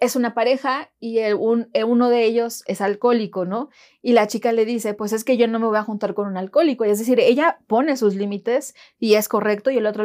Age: 30-49